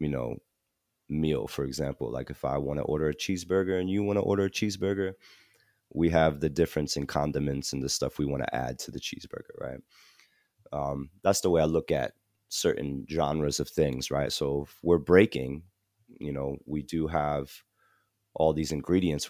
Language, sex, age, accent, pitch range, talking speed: English, male, 30-49, American, 70-95 Hz, 190 wpm